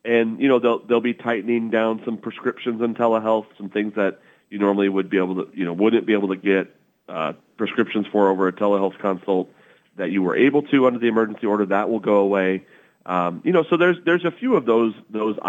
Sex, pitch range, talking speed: male, 95-115 Hz, 230 wpm